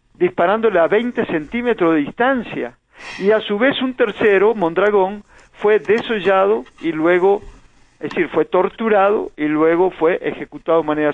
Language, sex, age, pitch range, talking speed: Spanish, male, 50-69, 165-220 Hz, 145 wpm